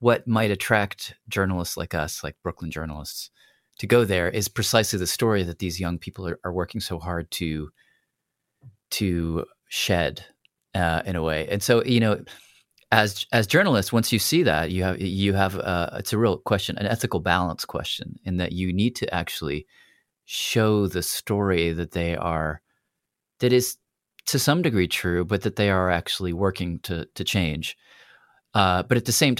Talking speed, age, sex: 180 wpm, 30-49, male